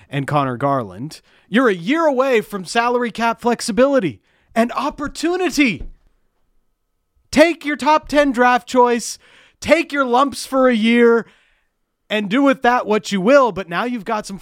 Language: English